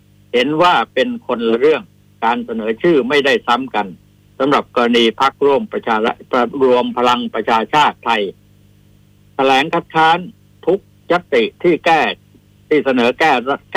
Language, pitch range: Thai, 105-135 Hz